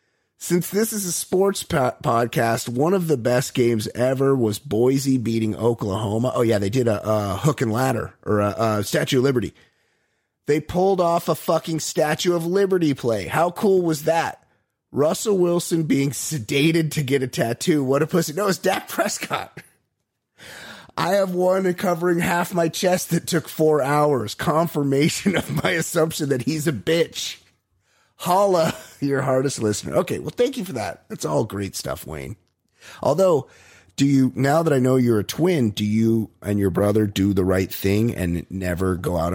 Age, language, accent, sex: 30-49, English, American, male